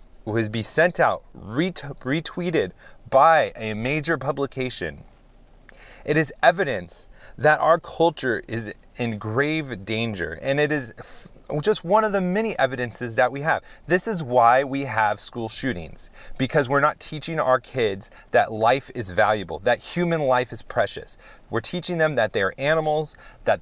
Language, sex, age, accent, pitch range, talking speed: English, male, 30-49, American, 115-155 Hz, 150 wpm